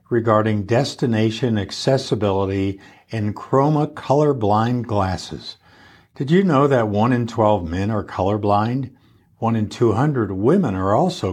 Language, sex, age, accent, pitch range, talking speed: English, male, 60-79, American, 95-125 Hz, 120 wpm